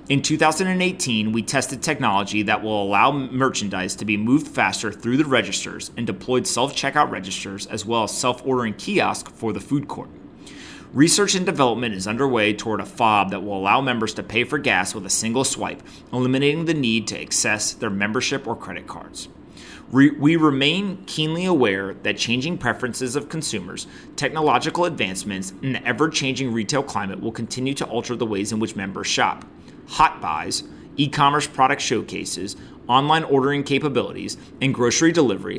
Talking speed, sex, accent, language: 160 wpm, male, American, English